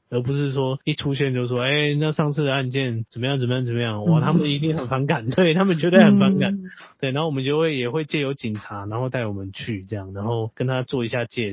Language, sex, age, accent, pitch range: Chinese, male, 30-49, native, 110-145 Hz